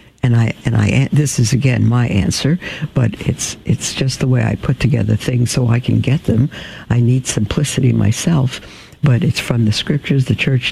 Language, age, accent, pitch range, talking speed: English, 60-79, American, 120-145 Hz, 195 wpm